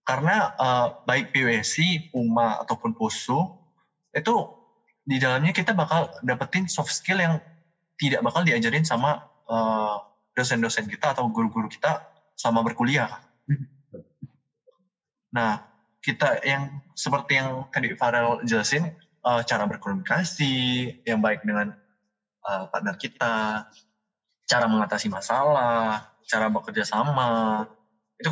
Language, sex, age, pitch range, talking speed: Indonesian, male, 20-39, 115-155 Hz, 110 wpm